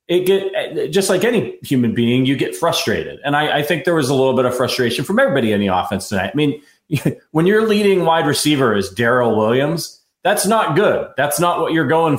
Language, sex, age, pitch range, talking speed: English, male, 30-49, 120-160 Hz, 220 wpm